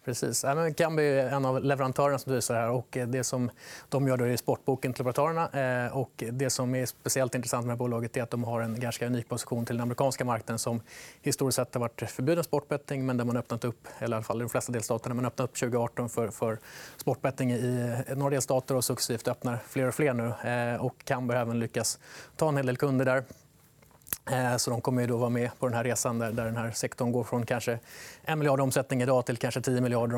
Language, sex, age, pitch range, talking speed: Swedish, male, 30-49, 120-130 Hz, 220 wpm